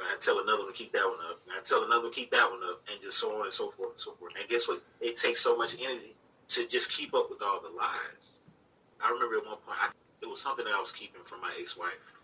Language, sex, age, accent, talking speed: English, male, 30-49, American, 305 wpm